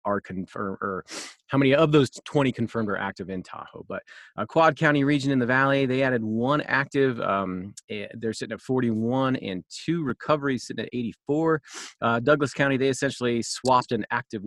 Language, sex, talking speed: English, male, 185 wpm